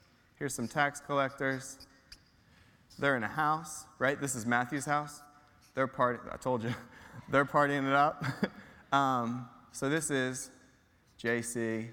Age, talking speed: 20-39, 135 wpm